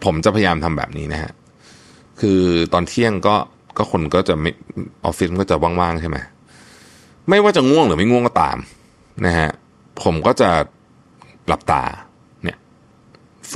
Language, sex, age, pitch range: Thai, male, 30-49, 80-100 Hz